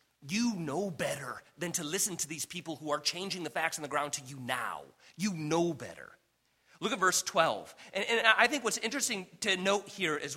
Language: English